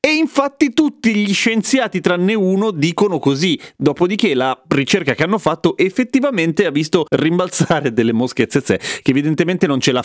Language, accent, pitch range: Italian, native, 125-175 Hz